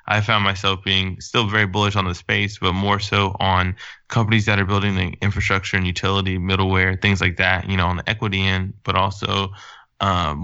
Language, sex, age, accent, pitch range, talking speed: English, male, 20-39, American, 90-100 Hz, 200 wpm